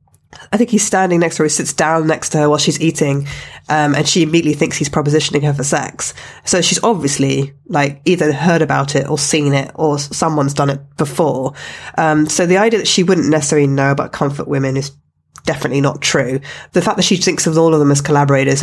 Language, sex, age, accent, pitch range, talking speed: English, female, 20-39, British, 140-170 Hz, 220 wpm